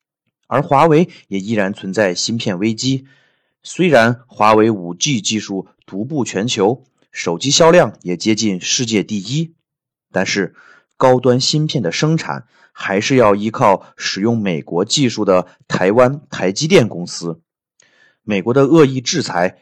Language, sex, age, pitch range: Chinese, male, 30-49, 100-145 Hz